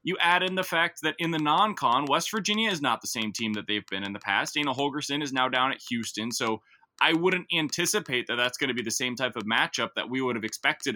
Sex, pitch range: male, 125-190 Hz